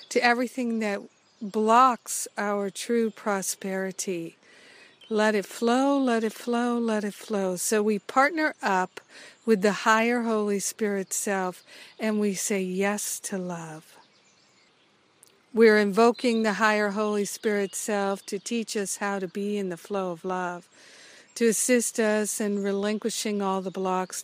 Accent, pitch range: American, 190-225 Hz